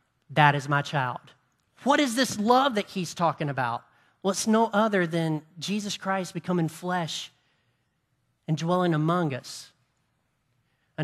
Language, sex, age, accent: English, male, 40-59, American